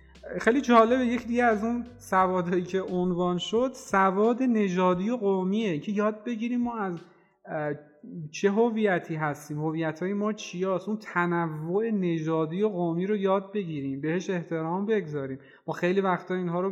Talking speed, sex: 145 wpm, male